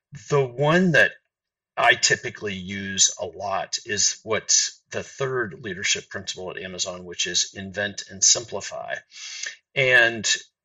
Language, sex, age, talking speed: English, male, 50-69, 125 wpm